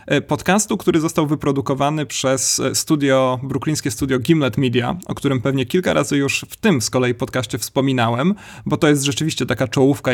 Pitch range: 125-145 Hz